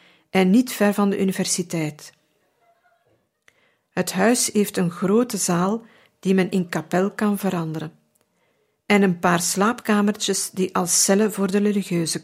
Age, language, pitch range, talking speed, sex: 50-69, Dutch, 175-210 Hz, 135 wpm, female